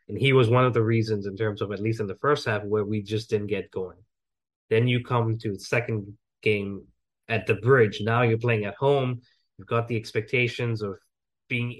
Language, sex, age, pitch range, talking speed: English, male, 20-39, 110-140 Hz, 220 wpm